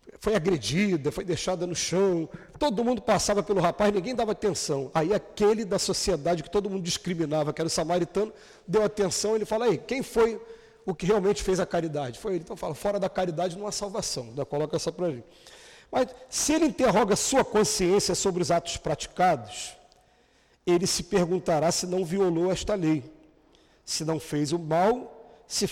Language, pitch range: Portuguese, 165-210 Hz